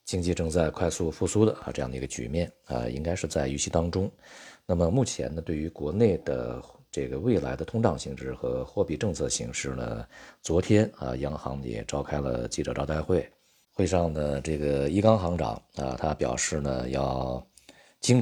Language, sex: Chinese, male